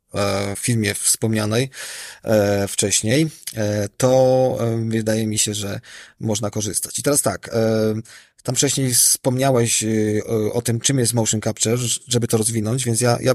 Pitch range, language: 110-125 Hz, Polish